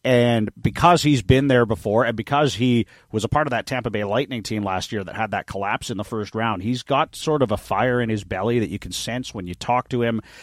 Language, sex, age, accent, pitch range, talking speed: English, male, 30-49, American, 105-125 Hz, 265 wpm